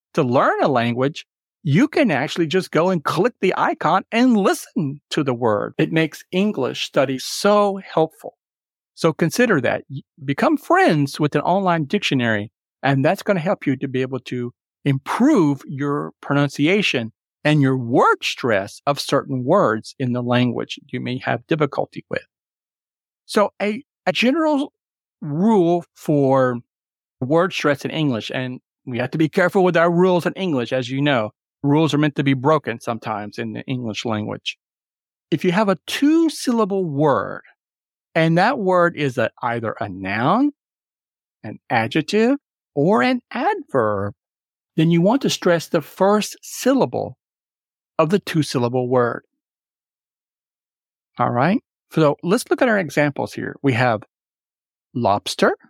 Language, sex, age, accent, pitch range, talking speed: English, male, 50-69, American, 130-200 Hz, 150 wpm